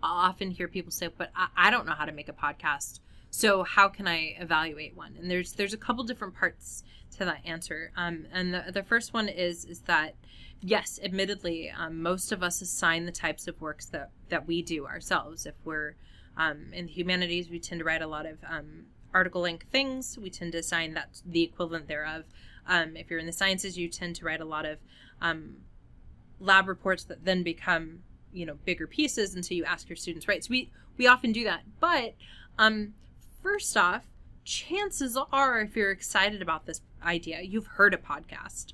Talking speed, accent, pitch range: 205 wpm, American, 170-210 Hz